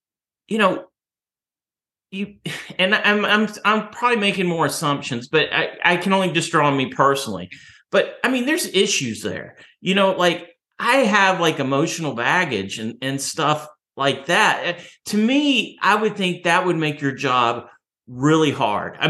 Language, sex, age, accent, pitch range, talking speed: English, male, 40-59, American, 140-190 Hz, 165 wpm